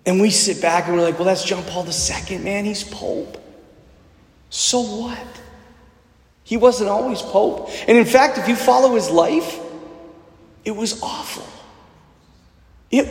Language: English